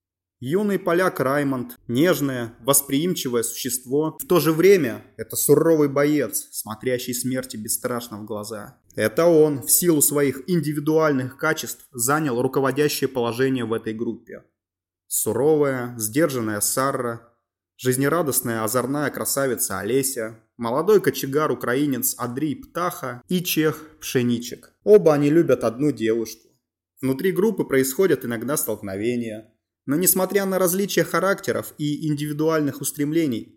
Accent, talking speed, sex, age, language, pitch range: native, 115 wpm, male, 20-39, Russian, 120-155 Hz